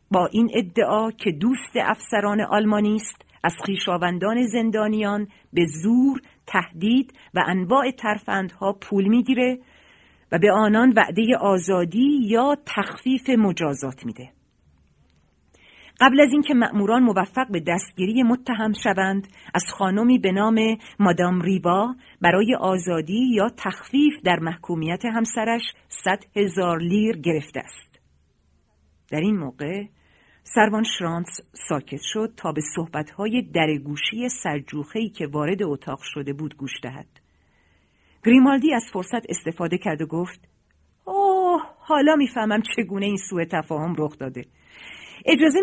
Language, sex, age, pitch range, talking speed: Persian, female, 40-59, 160-225 Hz, 120 wpm